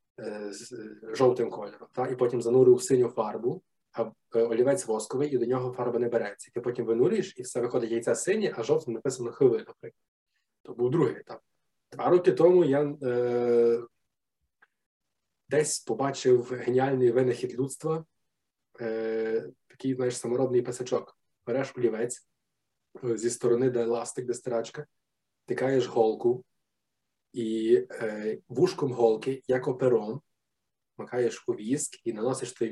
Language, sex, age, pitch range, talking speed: Ukrainian, male, 20-39, 115-135 Hz, 130 wpm